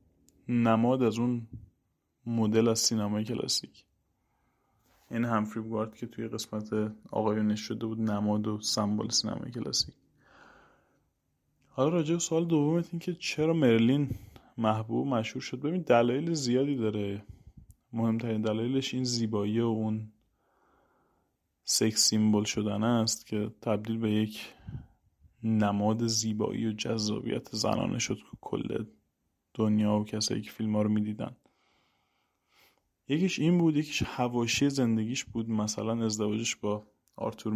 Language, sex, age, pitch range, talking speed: Persian, male, 20-39, 105-120 Hz, 125 wpm